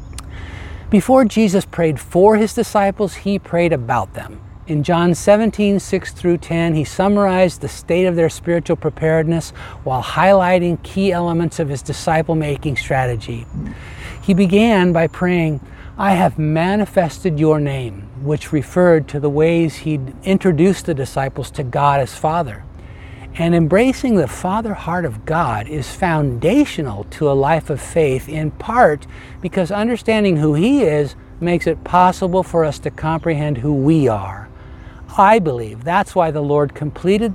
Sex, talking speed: male, 150 wpm